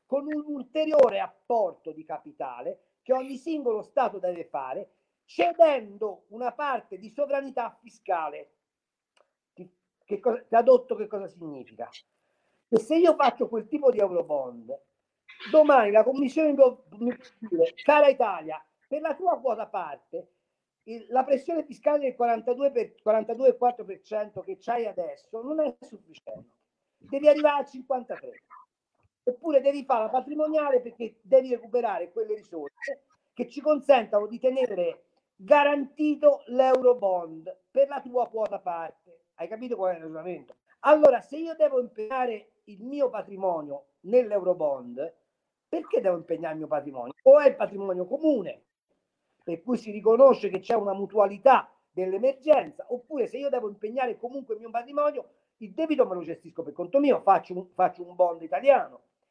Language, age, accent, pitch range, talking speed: Italian, 50-69, native, 200-280 Hz, 145 wpm